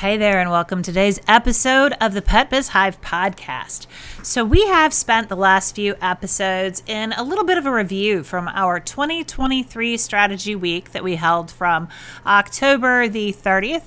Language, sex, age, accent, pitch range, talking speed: English, female, 40-59, American, 180-230 Hz, 175 wpm